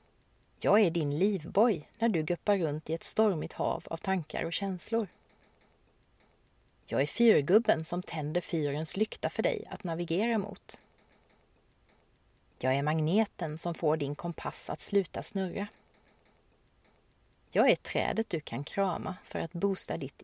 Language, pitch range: Swedish, 160-205 Hz